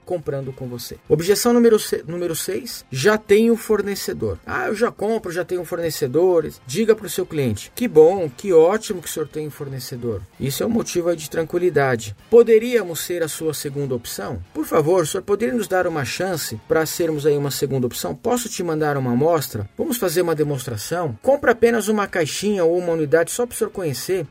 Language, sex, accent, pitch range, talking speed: Portuguese, male, Brazilian, 145-190 Hz, 200 wpm